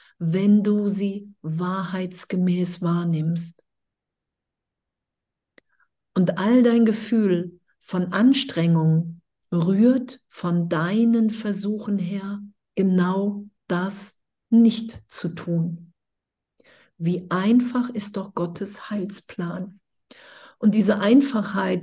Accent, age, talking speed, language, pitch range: German, 50-69, 80 wpm, German, 170-205 Hz